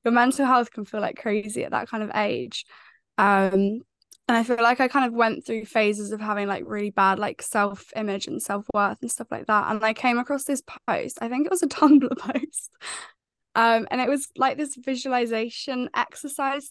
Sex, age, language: female, 10-29, English